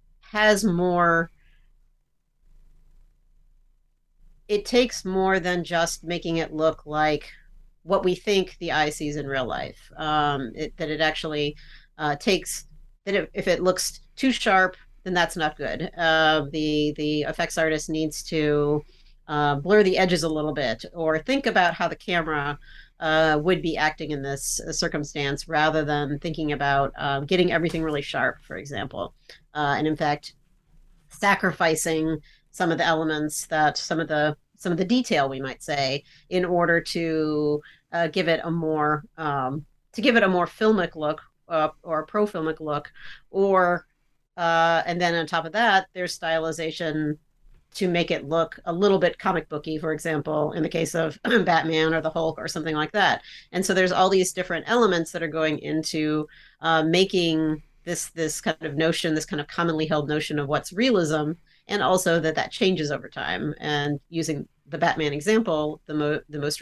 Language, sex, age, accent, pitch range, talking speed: English, female, 40-59, American, 150-175 Hz, 175 wpm